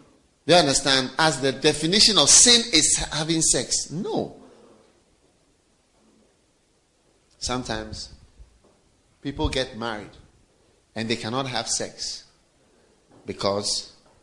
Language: English